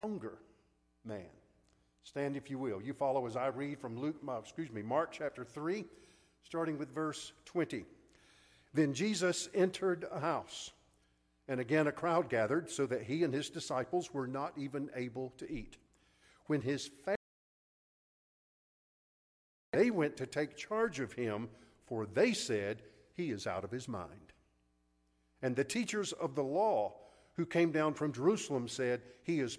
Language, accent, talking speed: English, American, 155 wpm